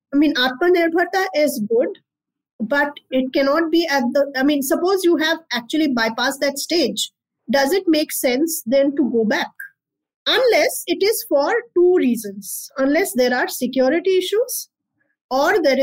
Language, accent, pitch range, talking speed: Hindi, native, 235-325 Hz, 155 wpm